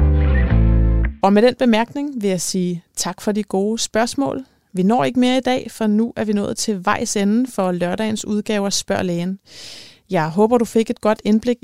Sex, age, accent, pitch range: female, 30-49, native, 185-225 Hz